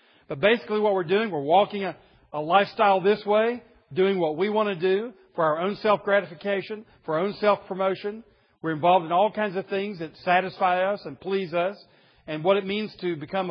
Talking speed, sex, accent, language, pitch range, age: 200 wpm, male, American, English, 190-245 Hz, 50-69